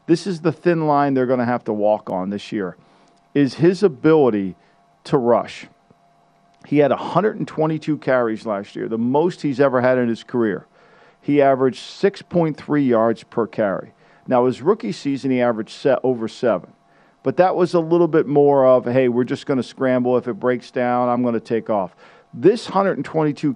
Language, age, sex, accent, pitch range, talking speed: English, 50-69, male, American, 120-145 Hz, 185 wpm